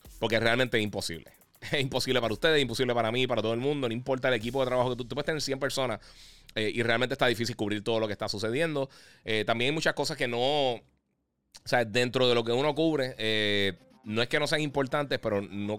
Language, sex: Spanish, male